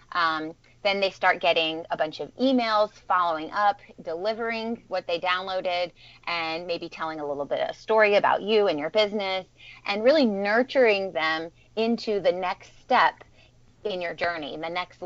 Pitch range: 165-205 Hz